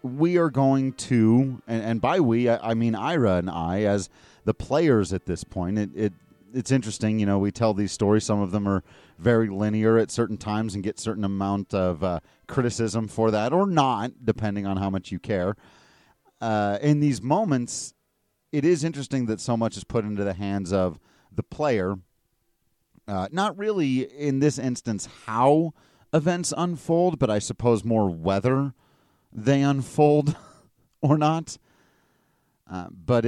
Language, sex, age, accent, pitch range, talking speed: English, male, 30-49, American, 100-135 Hz, 165 wpm